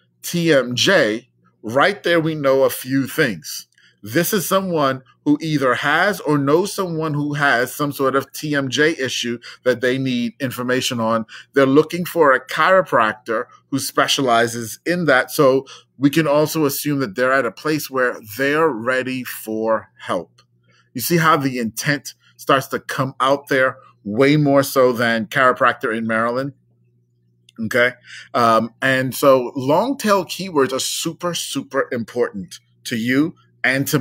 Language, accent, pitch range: English, American, 120-150 Hz